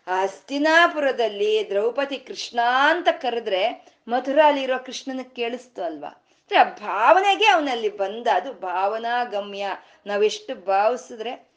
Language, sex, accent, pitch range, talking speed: Kannada, female, native, 200-270 Hz, 105 wpm